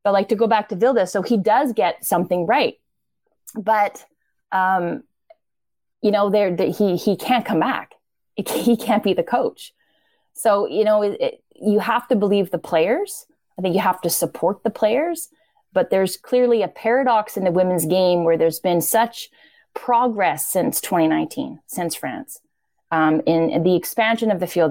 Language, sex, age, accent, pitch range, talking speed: English, female, 20-39, American, 165-230 Hz, 175 wpm